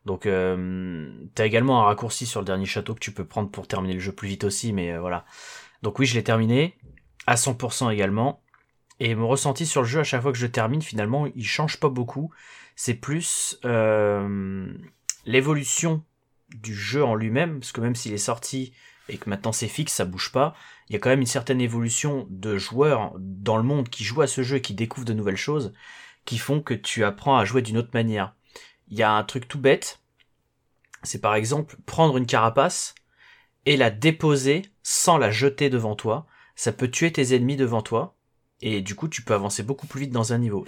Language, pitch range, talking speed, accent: French, 105-135 Hz, 215 wpm, French